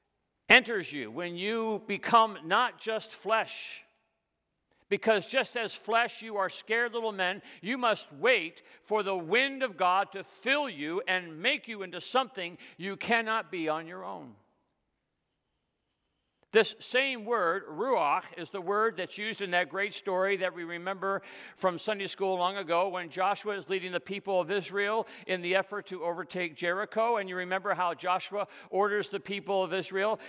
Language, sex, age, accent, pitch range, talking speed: English, male, 50-69, American, 185-225 Hz, 165 wpm